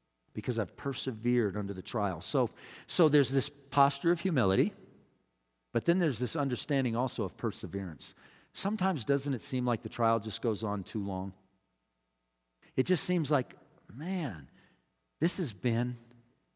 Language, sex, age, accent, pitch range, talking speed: English, male, 50-69, American, 90-130 Hz, 150 wpm